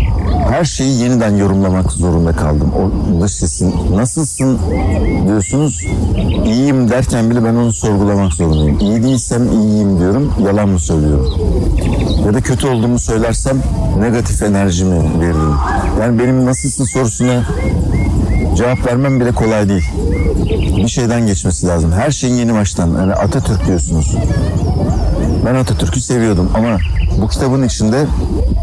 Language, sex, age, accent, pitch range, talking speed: Turkish, male, 60-79, native, 85-110 Hz, 120 wpm